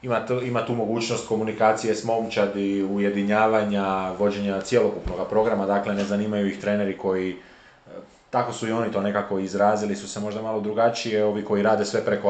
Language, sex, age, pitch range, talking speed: Croatian, male, 30-49, 100-115 Hz, 170 wpm